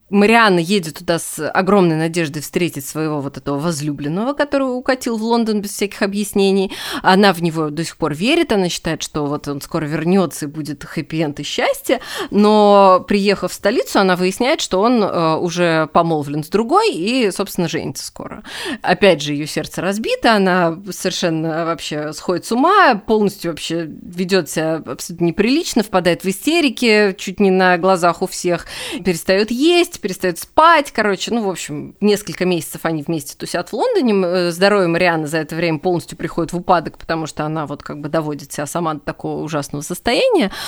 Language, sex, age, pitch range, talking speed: Russian, female, 20-39, 160-205 Hz, 170 wpm